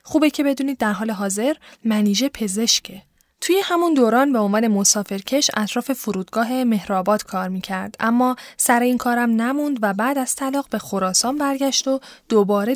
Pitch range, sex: 205-275 Hz, female